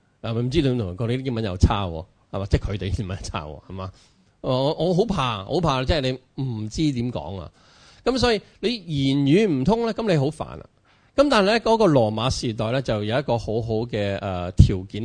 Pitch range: 105-140 Hz